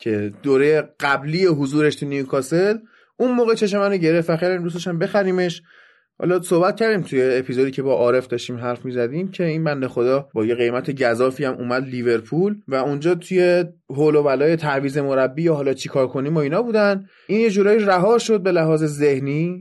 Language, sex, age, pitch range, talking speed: Persian, male, 20-39, 135-185 Hz, 180 wpm